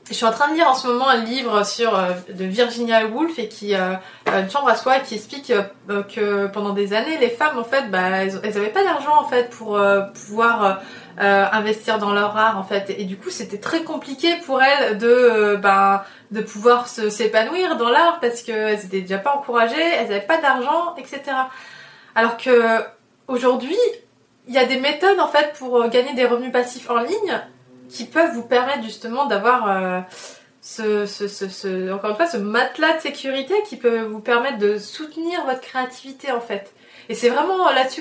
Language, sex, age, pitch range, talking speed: French, female, 20-39, 215-265 Hz, 200 wpm